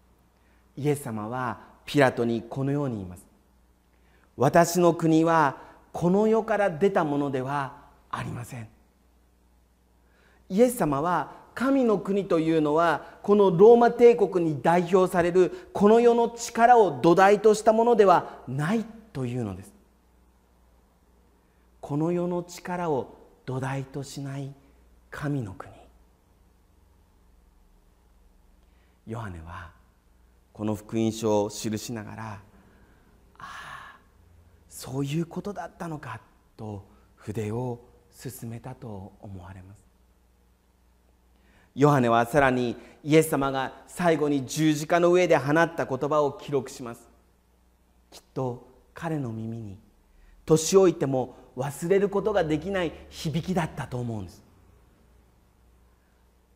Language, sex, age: Japanese, male, 40-59